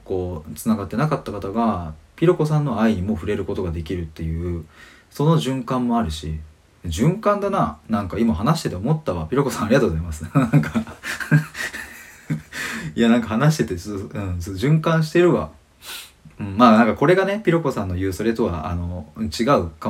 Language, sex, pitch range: Japanese, male, 80-115 Hz